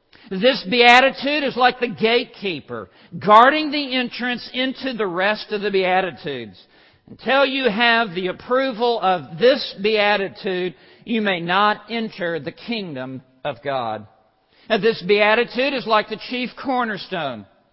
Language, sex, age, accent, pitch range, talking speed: English, male, 50-69, American, 195-245 Hz, 130 wpm